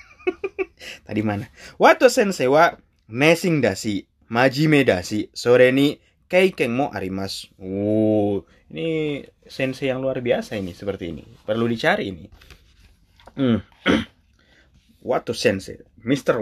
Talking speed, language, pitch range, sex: 115 wpm, Indonesian, 100-150 Hz, male